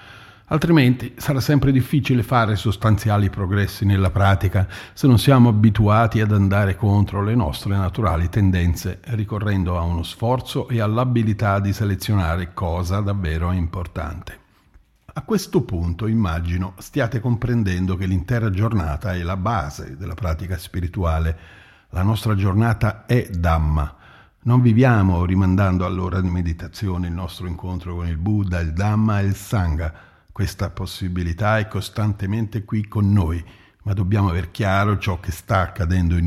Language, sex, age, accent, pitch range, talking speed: Italian, male, 50-69, native, 90-110 Hz, 140 wpm